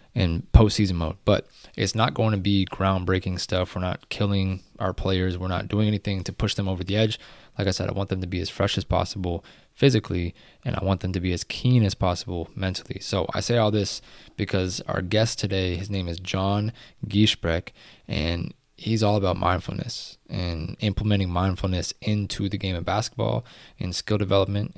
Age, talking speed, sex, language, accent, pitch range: 20-39, 195 wpm, male, English, American, 90-105 Hz